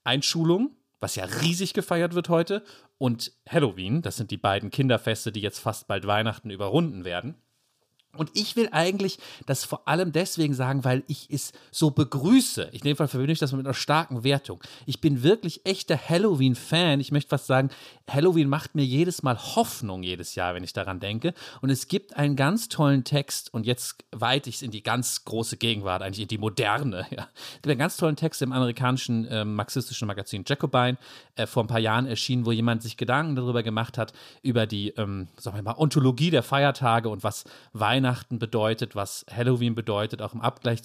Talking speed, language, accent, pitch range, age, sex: 195 wpm, German, German, 115-155 Hz, 40-59, male